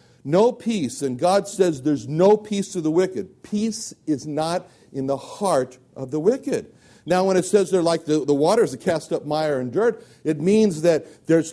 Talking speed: 205 wpm